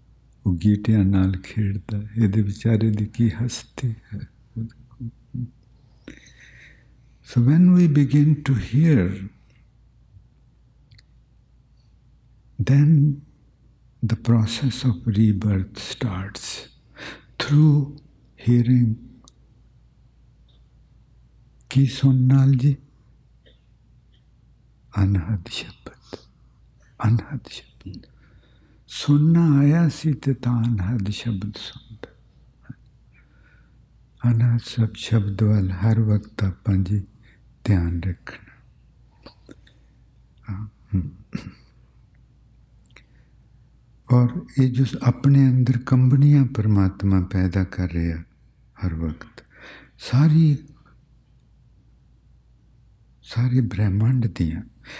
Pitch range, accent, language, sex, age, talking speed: 105-130 Hz, Indian, English, male, 60-79, 60 wpm